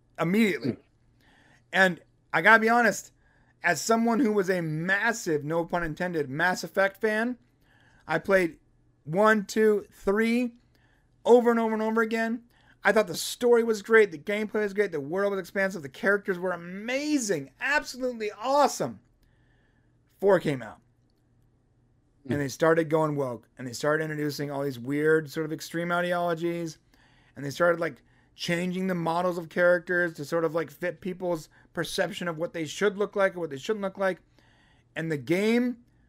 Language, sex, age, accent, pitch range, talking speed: English, male, 30-49, American, 150-220 Hz, 165 wpm